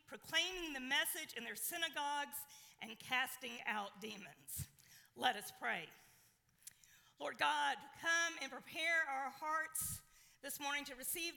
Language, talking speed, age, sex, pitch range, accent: English, 125 wpm, 40-59, female, 245-320 Hz, American